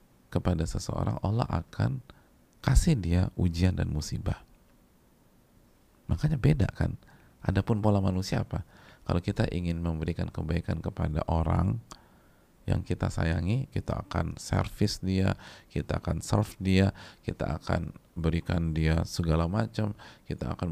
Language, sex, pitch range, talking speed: Indonesian, male, 80-110 Hz, 120 wpm